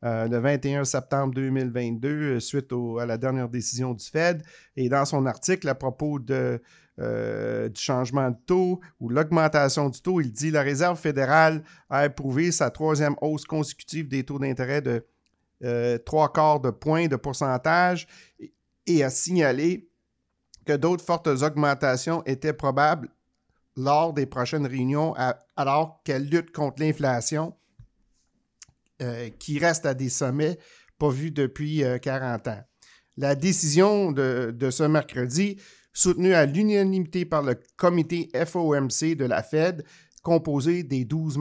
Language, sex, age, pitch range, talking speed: French, male, 50-69, 130-160 Hz, 140 wpm